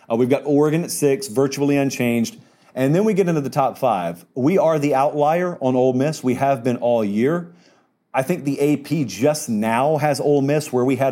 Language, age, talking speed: English, 40-59, 215 wpm